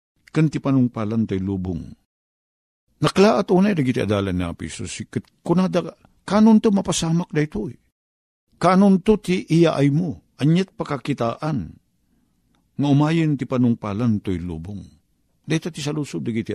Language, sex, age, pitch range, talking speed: Filipino, male, 50-69, 105-165 Hz, 125 wpm